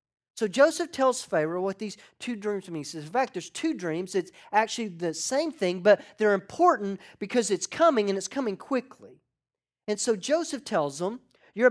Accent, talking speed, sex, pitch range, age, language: American, 190 wpm, male, 160-245 Hz, 40-59, English